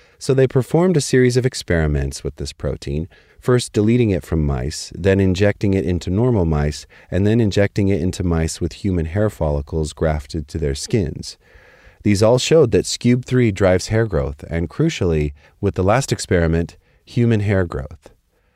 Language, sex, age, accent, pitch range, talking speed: English, male, 30-49, American, 80-105 Hz, 170 wpm